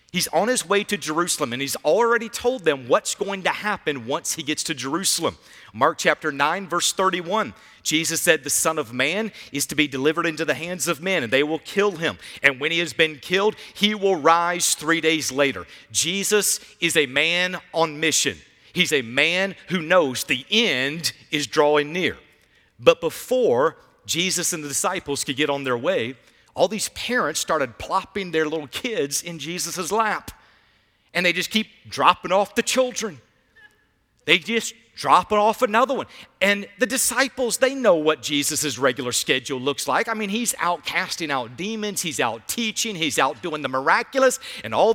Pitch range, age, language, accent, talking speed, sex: 155-215 Hz, 50-69, English, American, 185 wpm, male